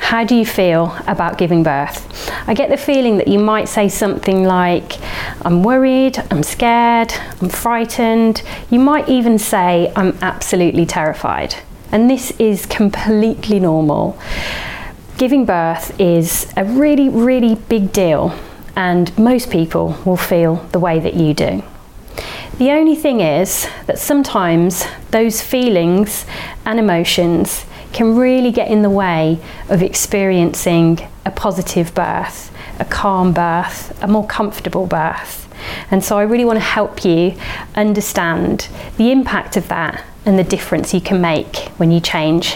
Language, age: English, 30-49